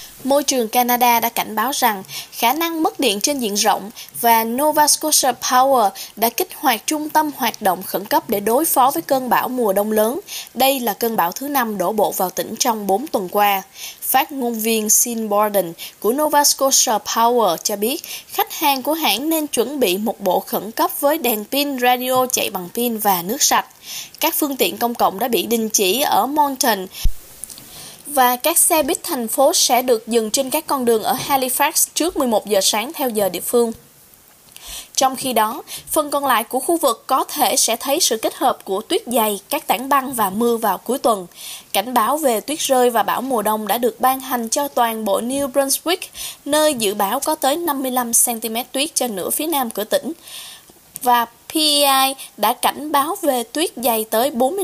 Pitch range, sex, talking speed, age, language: 225-290 Hz, female, 200 wpm, 10-29, Vietnamese